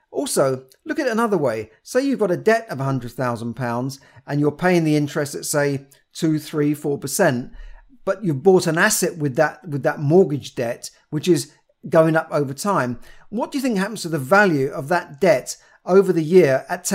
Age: 50-69